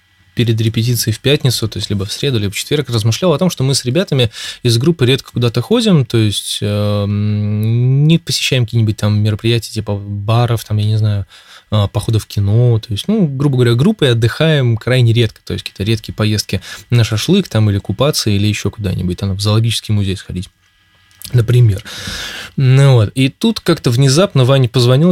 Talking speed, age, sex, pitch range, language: 185 wpm, 20-39, male, 105-130 Hz, Russian